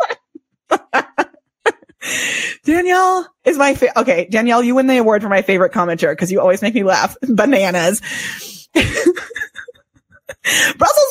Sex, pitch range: female, 210-290 Hz